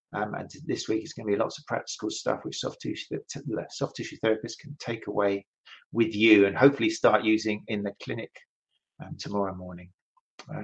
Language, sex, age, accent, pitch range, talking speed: English, male, 40-59, British, 110-140 Hz, 185 wpm